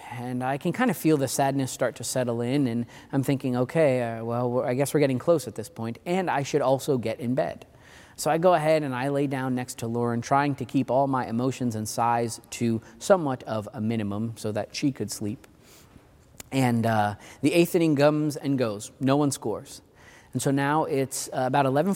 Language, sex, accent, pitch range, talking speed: English, male, American, 120-160 Hz, 220 wpm